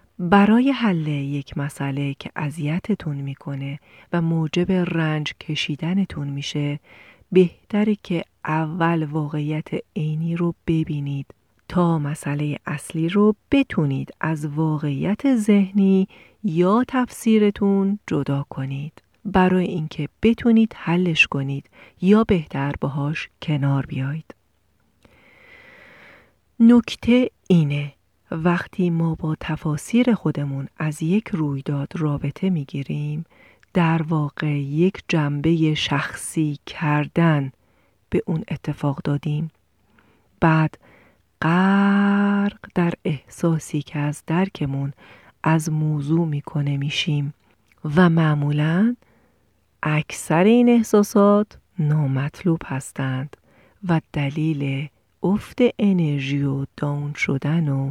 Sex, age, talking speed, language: female, 40-59, 90 wpm, Persian